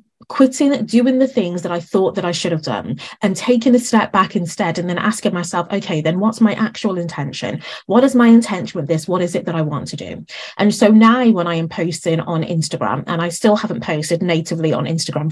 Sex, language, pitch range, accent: female, English, 170-225 Hz, British